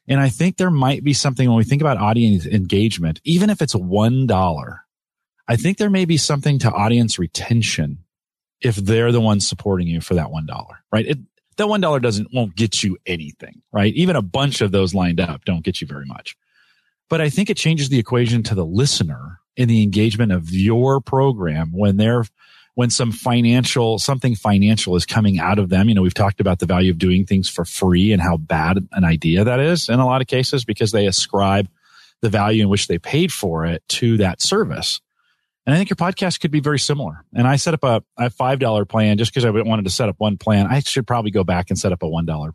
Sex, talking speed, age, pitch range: male, 225 wpm, 40-59, 95-135 Hz